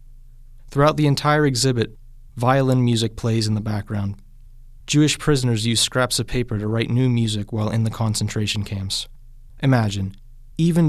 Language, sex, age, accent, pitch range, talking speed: English, male, 30-49, American, 110-125 Hz, 150 wpm